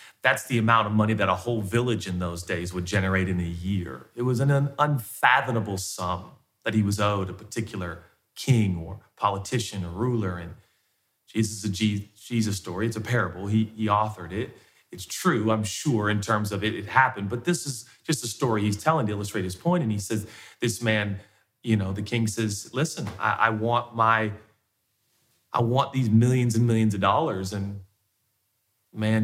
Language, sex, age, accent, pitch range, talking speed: English, male, 30-49, American, 100-120 Hz, 185 wpm